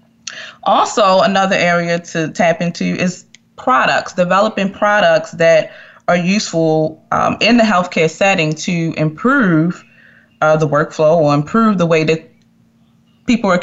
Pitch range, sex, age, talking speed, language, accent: 160-210 Hz, female, 20-39, 130 wpm, English, American